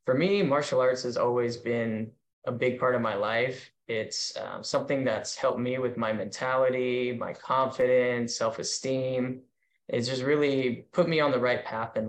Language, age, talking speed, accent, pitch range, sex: English, 10-29, 180 wpm, American, 120-130 Hz, male